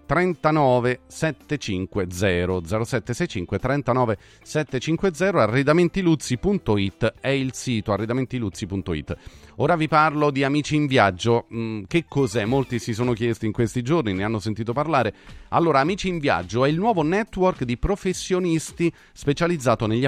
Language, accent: Italian, native